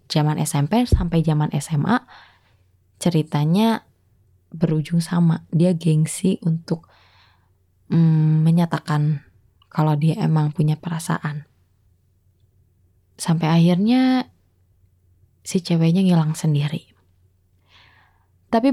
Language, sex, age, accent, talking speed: Indonesian, female, 20-39, native, 80 wpm